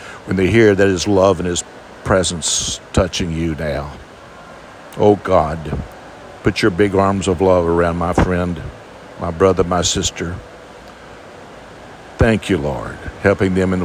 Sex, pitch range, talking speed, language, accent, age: male, 90-105 Hz, 145 wpm, English, American, 60-79